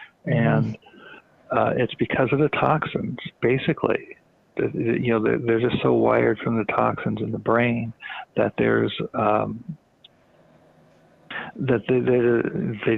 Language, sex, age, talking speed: English, male, 50-69, 115 wpm